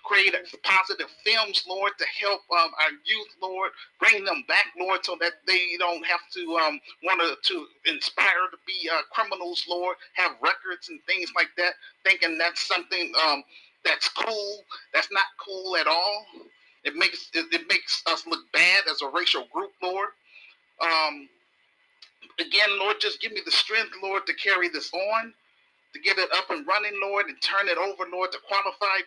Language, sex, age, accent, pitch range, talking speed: English, male, 40-59, American, 180-300 Hz, 175 wpm